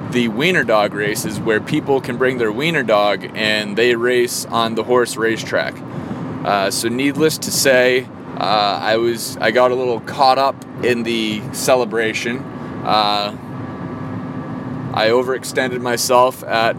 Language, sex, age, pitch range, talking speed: English, male, 20-39, 110-125 Hz, 145 wpm